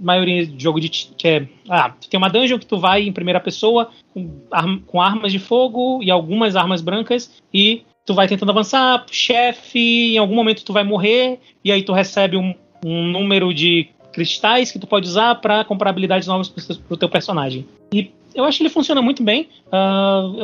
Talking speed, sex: 200 wpm, male